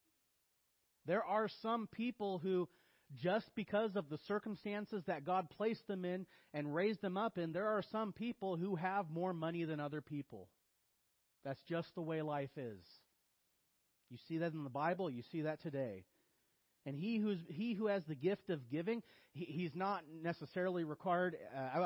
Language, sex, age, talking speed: English, male, 30-49, 170 wpm